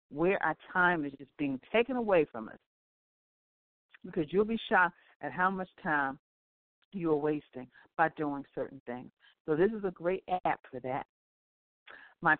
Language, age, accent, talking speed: English, 50-69, American, 165 wpm